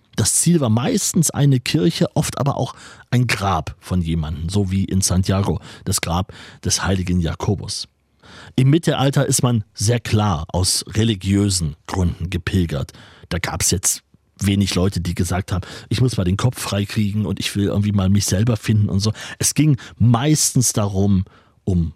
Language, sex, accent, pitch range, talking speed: German, male, German, 100-150 Hz, 170 wpm